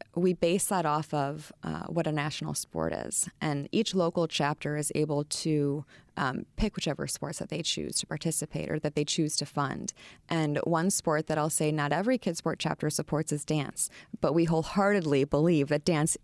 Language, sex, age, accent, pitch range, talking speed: English, female, 20-39, American, 150-170 Hz, 190 wpm